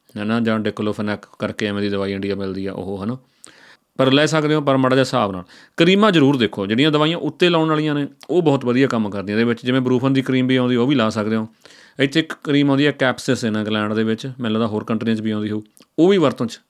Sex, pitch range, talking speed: male, 110-135 Hz, 250 wpm